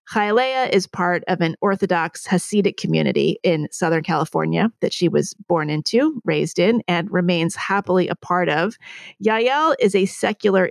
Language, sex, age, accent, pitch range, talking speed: English, female, 40-59, American, 180-220 Hz, 155 wpm